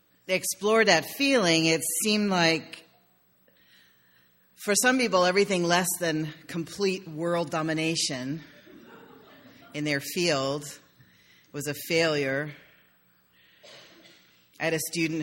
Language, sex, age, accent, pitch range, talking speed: English, female, 40-59, American, 130-175 Hz, 100 wpm